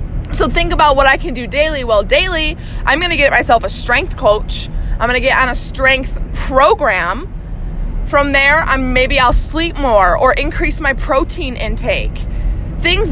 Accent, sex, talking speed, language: American, female, 180 wpm, English